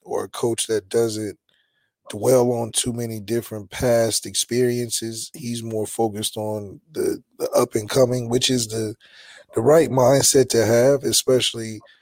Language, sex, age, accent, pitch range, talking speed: English, male, 20-39, American, 110-130 Hz, 140 wpm